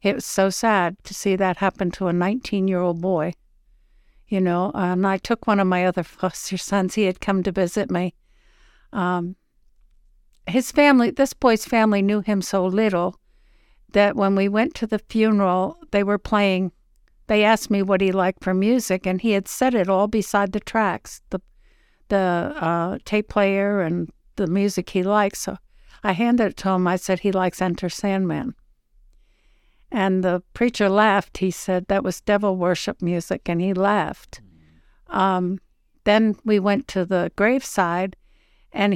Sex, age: female, 60-79